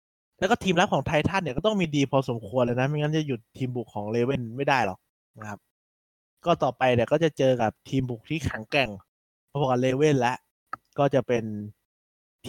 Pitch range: 115-155 Hz